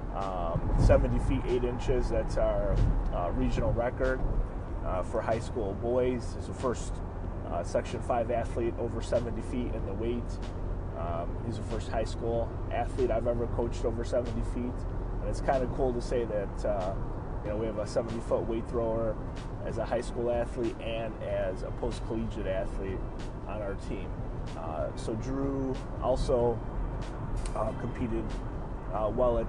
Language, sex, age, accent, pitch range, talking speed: English, male, 30-49, American, 100-120 Hz, 165 wpm